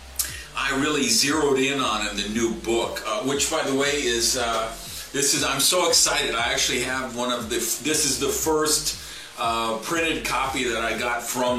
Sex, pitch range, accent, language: male, 115-155 Hz, American, English